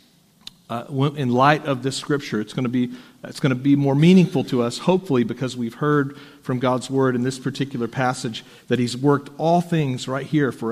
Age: 50-69